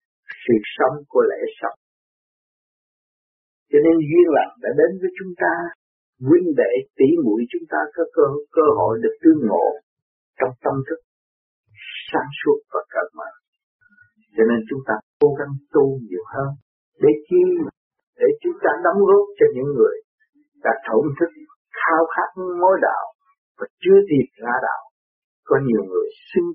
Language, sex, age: Vietnamese, male, 50-69